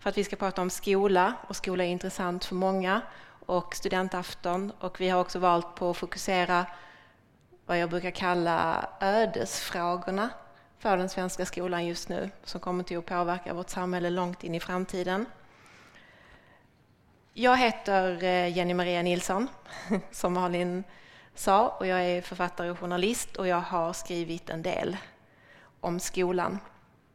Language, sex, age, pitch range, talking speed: English, female, 20-39, 180-195 Hz, 150 wpm